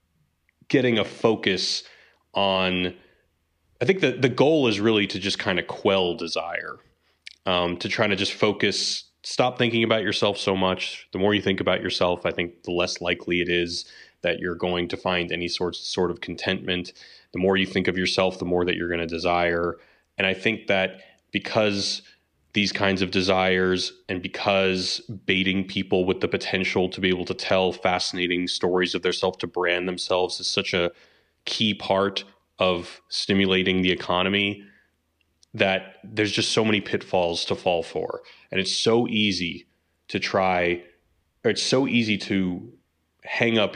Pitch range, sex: 85-100 Hz, male